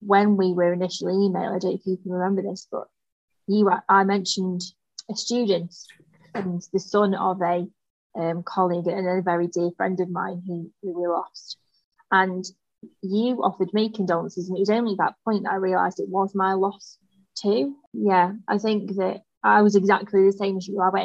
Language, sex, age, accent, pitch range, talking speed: English, female, 20-39, British, 180-210 Hz, 195 wpm